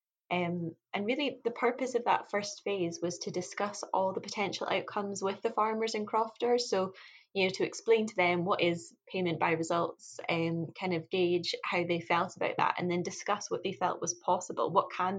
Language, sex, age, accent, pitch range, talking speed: English, female, 10-29, British, 165-190 Hz, 205 wpm